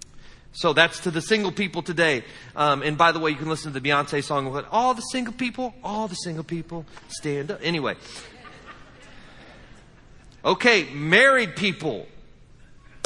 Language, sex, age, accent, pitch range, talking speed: English, male, 30-49, American, 170-240 Hz, 150 wpm